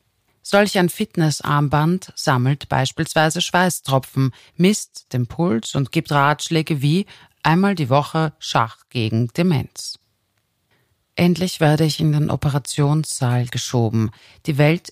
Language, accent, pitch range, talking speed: German, German, 125-160 Hz, 115 wpm